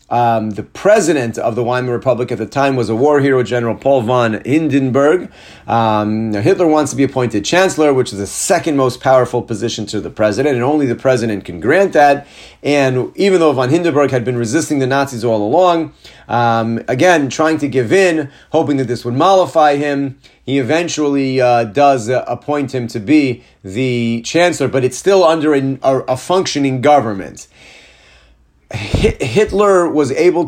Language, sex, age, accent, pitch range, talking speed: English, male, 40-59, American, 115-150 Hz, 175 wpm